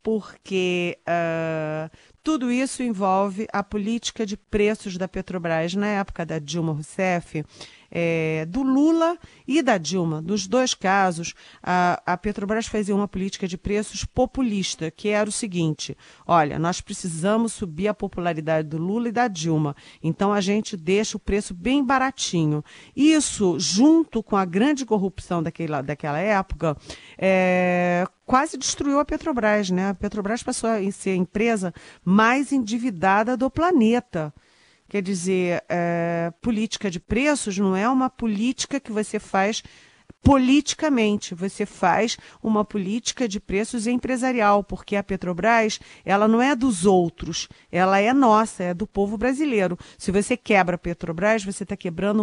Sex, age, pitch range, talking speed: female, 40-59, 180-230 Hz, 140 wpm